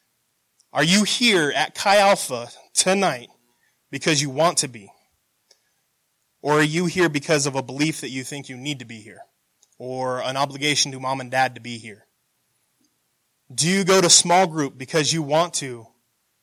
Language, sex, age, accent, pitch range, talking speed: English, male, 20-39, American, 130-160 Hz, 175 wpm